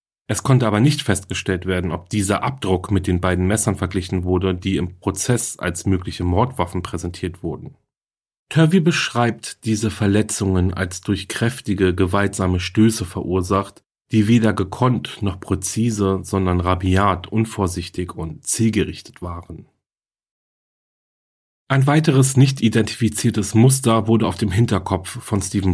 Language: German